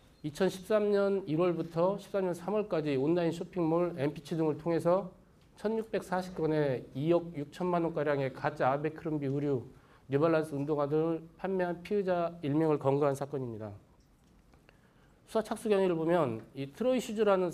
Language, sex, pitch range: Korean, male, 145-180 Hz